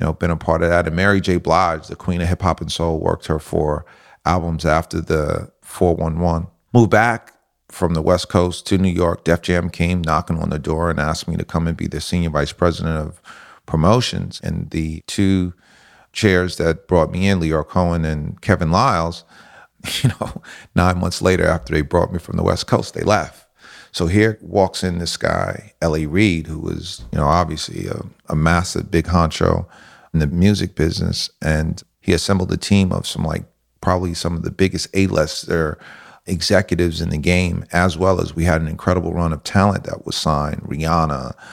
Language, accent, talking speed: English, American, 195 wpm